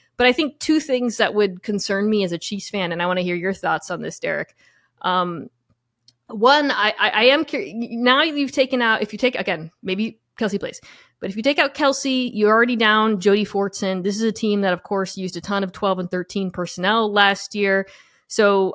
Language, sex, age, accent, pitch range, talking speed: English, female, 20-39, American, 185-230 Hz, 220 wpm